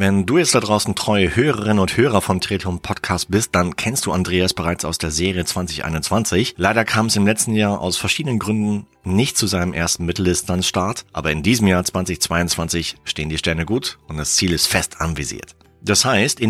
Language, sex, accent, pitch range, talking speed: German, male, German, 85-110 Hz, 195 wpm